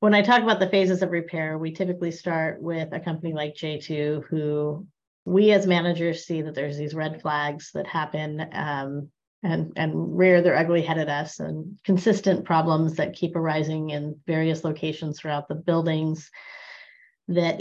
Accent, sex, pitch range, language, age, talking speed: American, female, 155-185 Hz, English, 30-49, 170 wpm